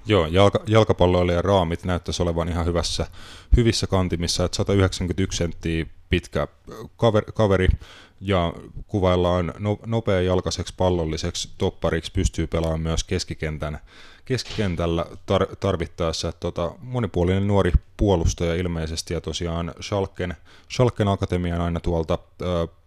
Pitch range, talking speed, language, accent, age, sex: 85-100 Hz, 110 wpm, Finnish, native, 20-39, male